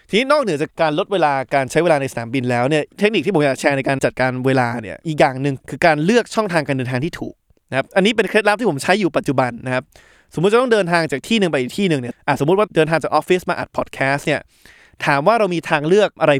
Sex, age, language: male, 20-39, Thai